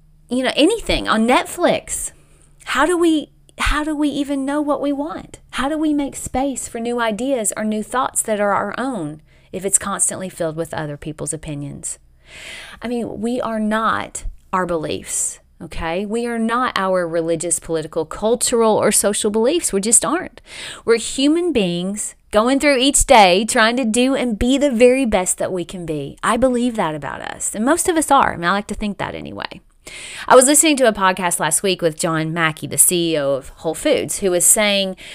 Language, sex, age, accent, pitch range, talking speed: English, female, 30-49, American, 185-260 Hz, 195 wpm